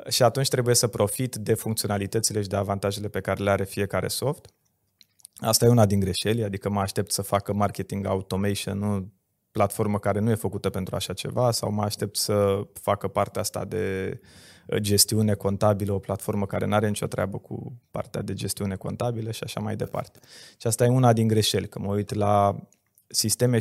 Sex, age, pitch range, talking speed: male, 20-39, 105-125 Hz, 185 wpm